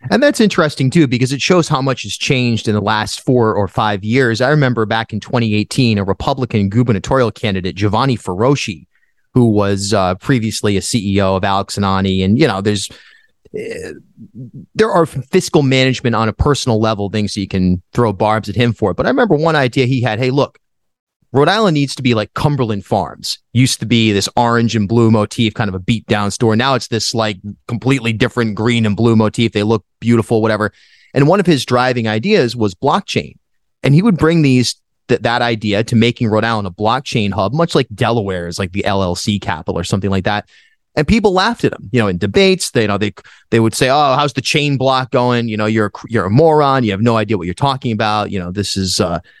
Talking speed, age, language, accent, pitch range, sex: 220 wpm, 30-49, English, American, 105-130 Hz, male